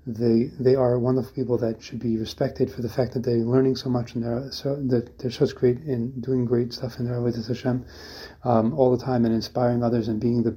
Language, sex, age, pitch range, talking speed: English, male, 30-49, 115-130 Hz, 225 wpm